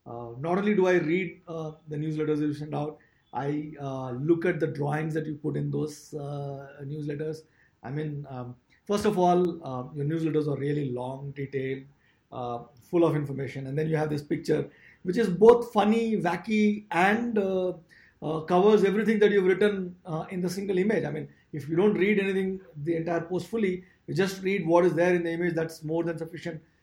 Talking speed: 200 wpm